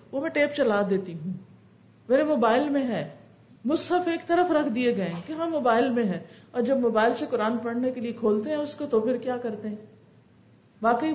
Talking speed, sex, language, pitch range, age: 210 wpm, female, Urdu, 215-275 Hz, 50-69